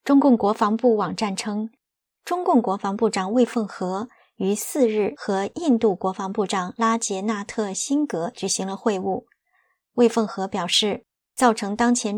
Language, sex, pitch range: Chinese, male, 195-240 Hz